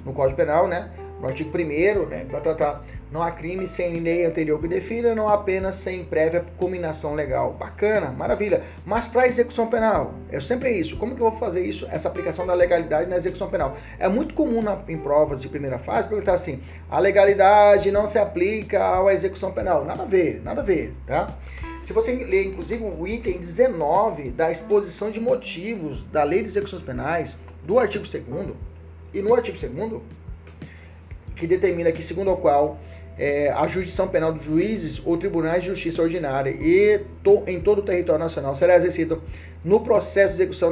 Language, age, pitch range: Portuguese, 30-49, 135-205 Hz